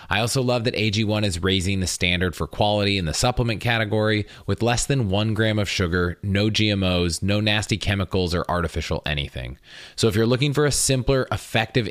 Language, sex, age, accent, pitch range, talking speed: English, male, 30-49, American, 90-120 Hz, 190 wpm